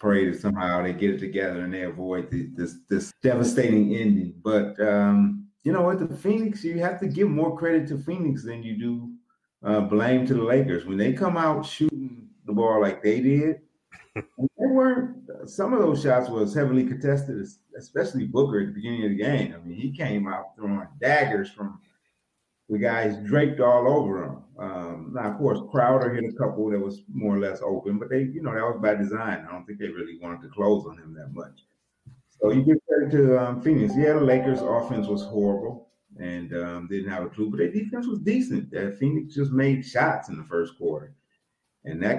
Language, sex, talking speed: English, male, 210 wpm